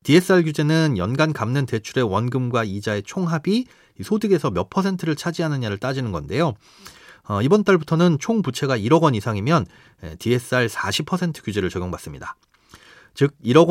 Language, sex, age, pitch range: Korean, male, 40-59, 110-165 Hz